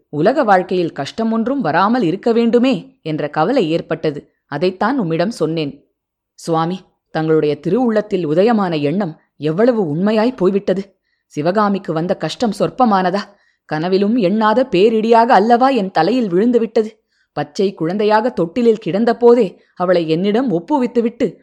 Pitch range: 170-235 Hz